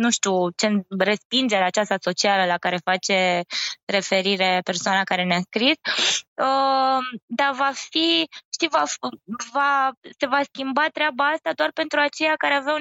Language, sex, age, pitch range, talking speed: Romanian, female, 20-39, 210-275 Hz, 150 wpm